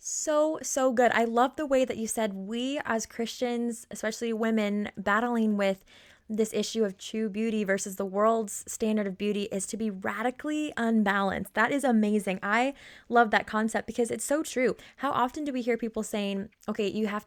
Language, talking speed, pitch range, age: English, 190 wpm, 205-245 Hz, 20-39